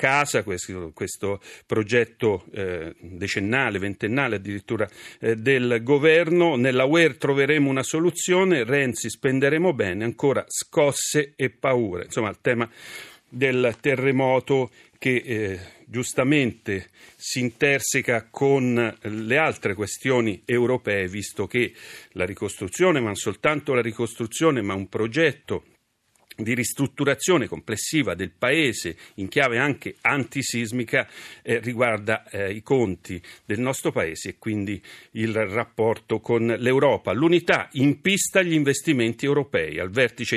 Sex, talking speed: male, 120 wpm